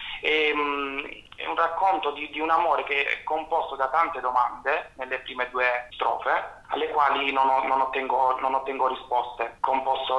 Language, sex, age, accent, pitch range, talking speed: Italian, male, 30-49, native, 130-160 Hz, 140 wpm